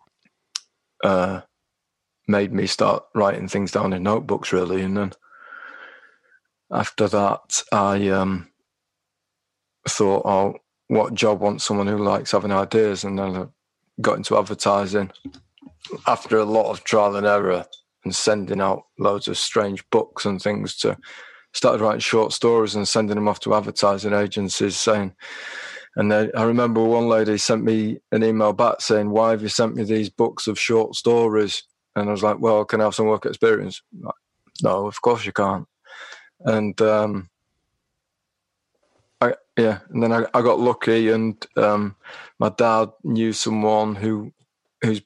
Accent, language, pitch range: British, English, 100-115 Hz